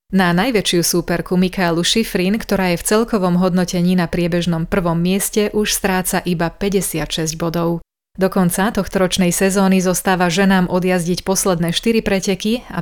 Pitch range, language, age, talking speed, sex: 175-205 Hz, Slovak, 30-49, 145 wpm, female